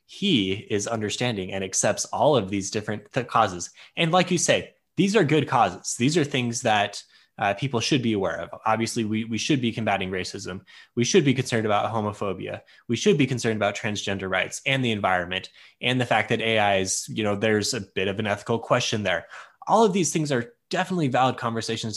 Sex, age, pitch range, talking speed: male, 10-29, 110-155 Hz, 210 wpm